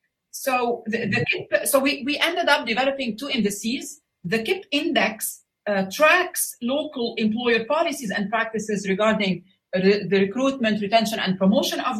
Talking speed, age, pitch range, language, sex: 150 wpm, 40-59, 200-260 Hz, English, female